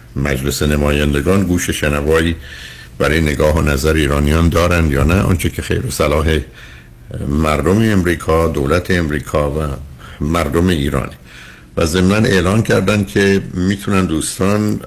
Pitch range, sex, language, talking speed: 75-95 Hz, male, Persian, 120 wpm